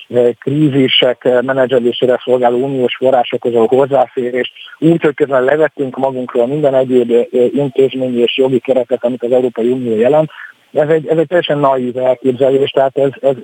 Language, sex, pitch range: Hungarian, male, 120-140 Hz